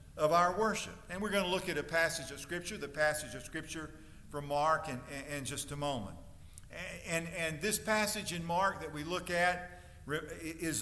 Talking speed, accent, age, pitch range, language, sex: 210 wpm, American, 50-69, 150-205 Hz, English, male